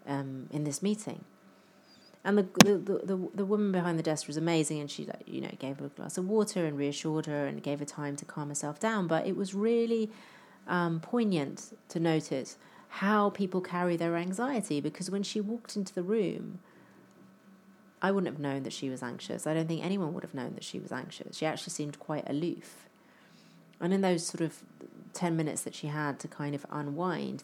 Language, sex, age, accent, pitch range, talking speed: English, female, 30-49, British, 145-185 Hz, 205 wpm